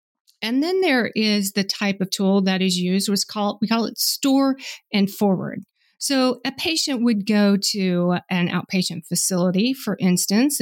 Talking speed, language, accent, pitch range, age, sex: 170 wpm, English, American, 185-235 Hz, 40-59, female